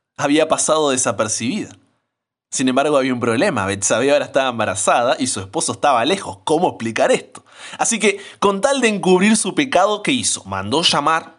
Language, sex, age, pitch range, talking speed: Spanish, male, 20-39, 125-180 Hz, 170 wpm